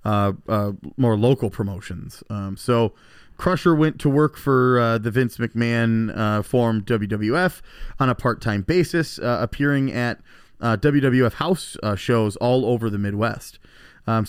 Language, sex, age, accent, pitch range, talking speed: English, male, 30-49, American, 105-130 Hz, 150 wpm